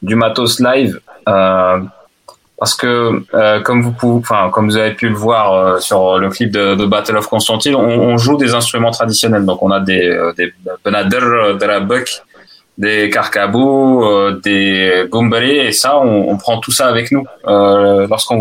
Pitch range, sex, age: 100-120 Hz, male, 20-39